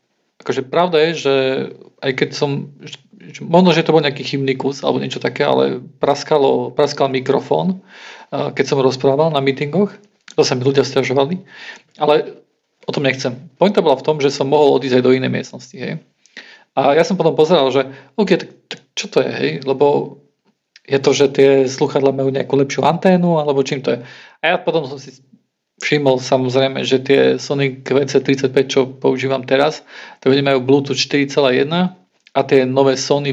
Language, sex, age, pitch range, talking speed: Slovak, male, 40-59, 130-150 Hz, 165 wpm